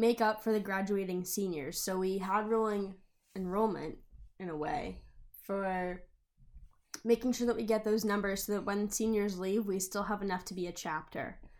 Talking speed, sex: 180 wpm, female